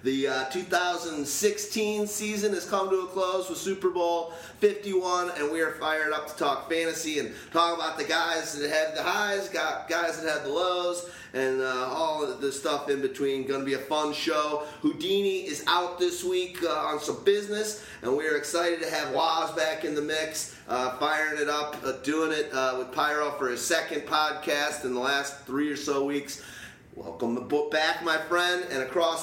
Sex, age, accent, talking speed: male, 30-49, American, 200 wpm